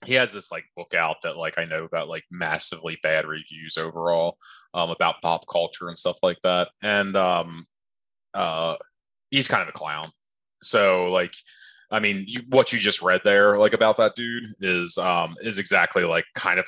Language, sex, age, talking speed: English, male, 20-39, 190 wpm